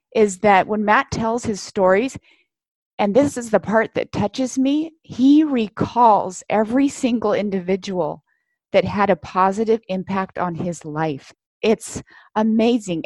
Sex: female